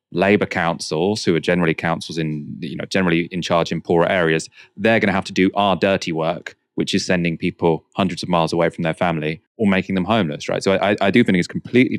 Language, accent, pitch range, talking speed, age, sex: English, British, 85-105 Hz, 235 wpm, 30-49, male